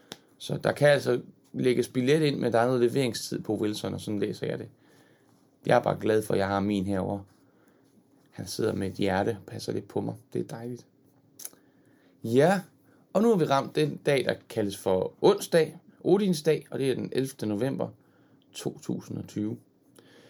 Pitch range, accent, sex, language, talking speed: 110-150 Hz, native, male, Danish, 185 wpm